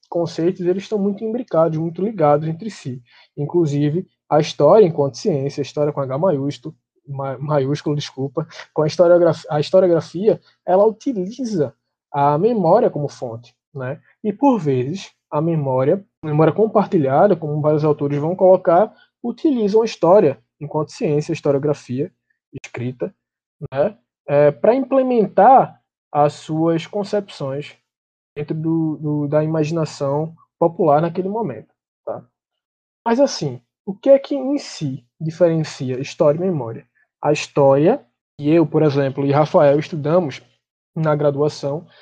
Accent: Brazilian